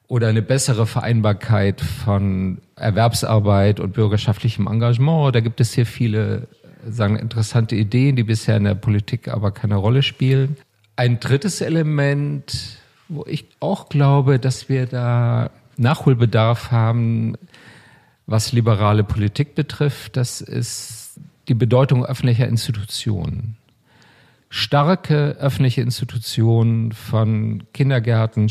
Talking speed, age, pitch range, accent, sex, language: 110 wpm, 50-69, 110-135 Hz, German, male, German